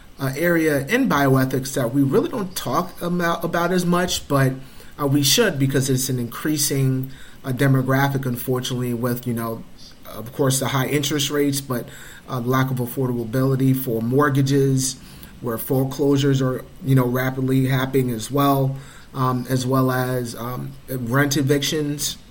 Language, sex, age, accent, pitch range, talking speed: English, male, 30-49, American, 125-145 Hz, 150 wpm